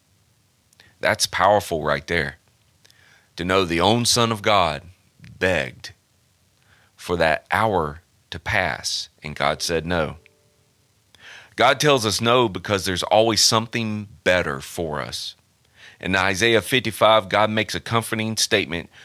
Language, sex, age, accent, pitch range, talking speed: English, male, 40-59, American, 90-115 Hz, 125 wpm